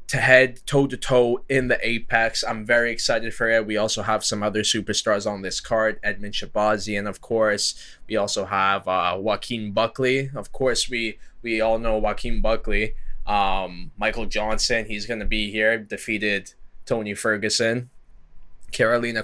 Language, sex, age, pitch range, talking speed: English, male, 10-29, 105-120 Hz, 155 wpm